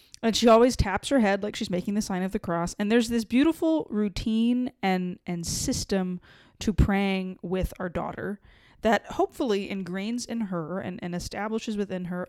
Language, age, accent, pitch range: English, 20-39, American, 185-240 Hz